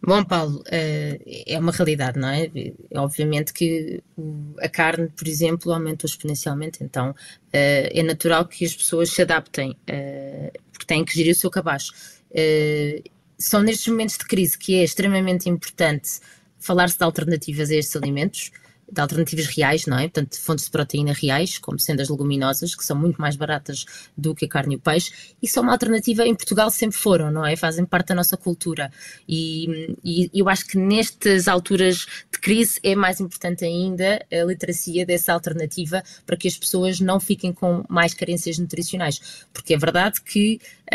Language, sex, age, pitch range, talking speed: Portuguese, female, 20-39, 155-185 Hz, 175 wpm